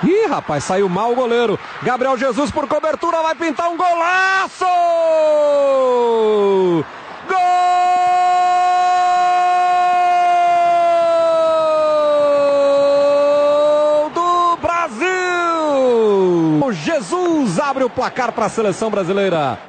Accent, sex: Brazilian, male